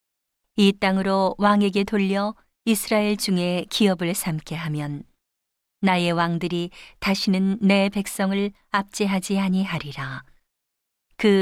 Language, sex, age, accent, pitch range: Korean, female, 40-59, native, 170-205 Hz